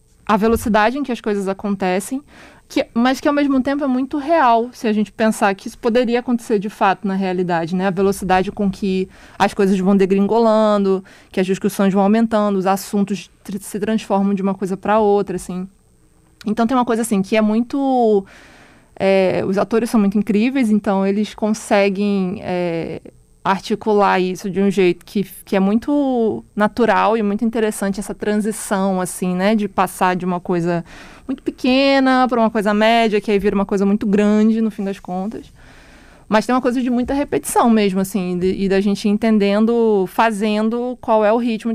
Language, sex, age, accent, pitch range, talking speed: Portuguese, female, 20-39, Brazilian, 190-220 Hz, 180 wpm